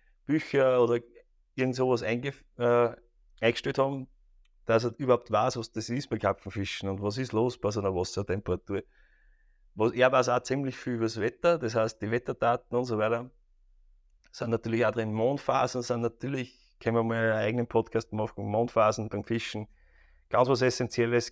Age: 30-49